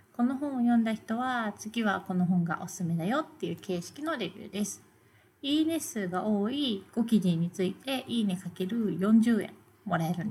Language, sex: Japanese, female